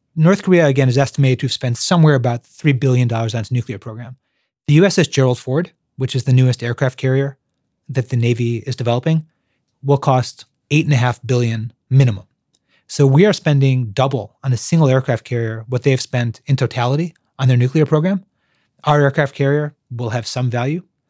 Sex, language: male, English